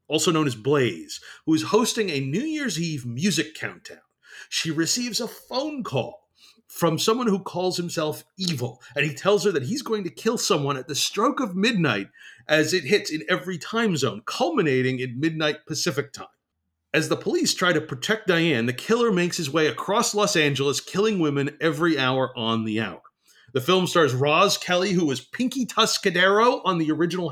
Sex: male